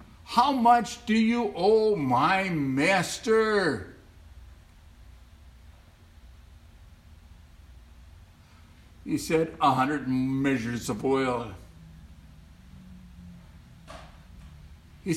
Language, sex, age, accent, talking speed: English, male, 60-79, American, 60 wpm